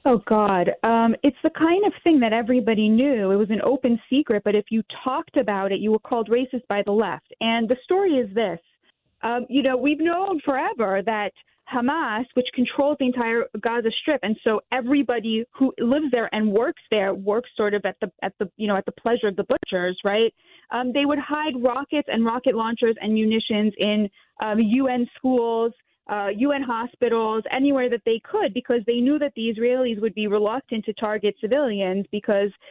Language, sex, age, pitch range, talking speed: English, female, 20-39, 215-280 Hz, 195 wpm